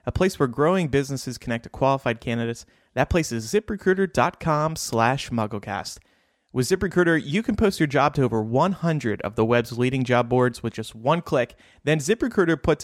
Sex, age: male, 30-49